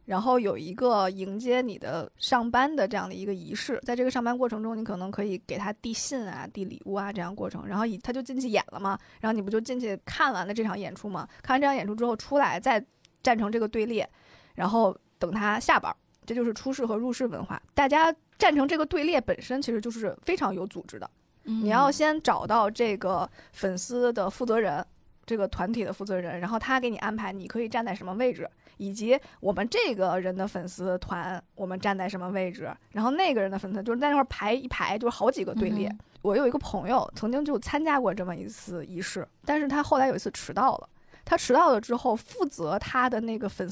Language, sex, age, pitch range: Chinese, female, 20-39, 195-255 Hz